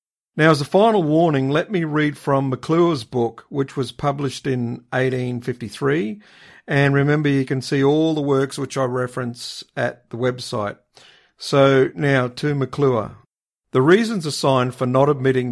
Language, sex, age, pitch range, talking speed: English, male, 50-69, 125-150 Hz, 155 wpm